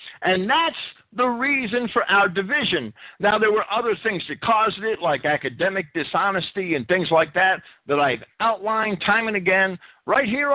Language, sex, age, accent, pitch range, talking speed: English, male, 50-69, American, 185-255 Hz, 170 wpm